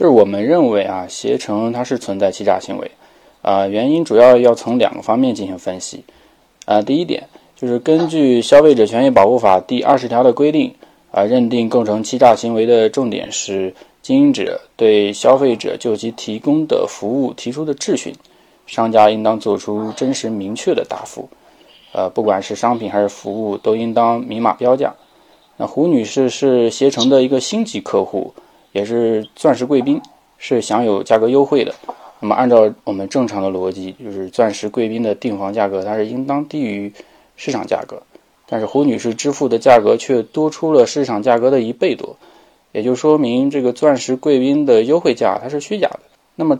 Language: Chinese